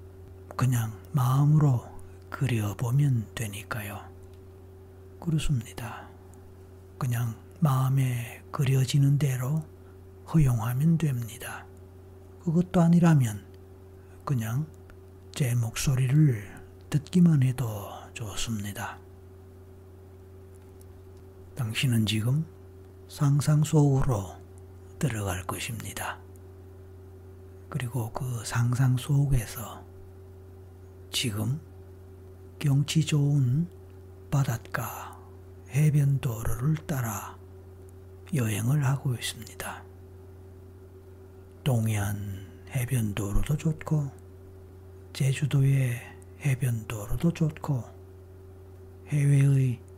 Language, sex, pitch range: Korean, male, 95-130 Hz